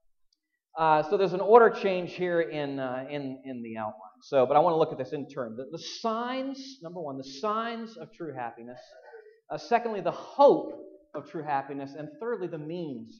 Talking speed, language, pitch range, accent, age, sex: 200 wpm, English, 160-235 Hz, American, 40-59, male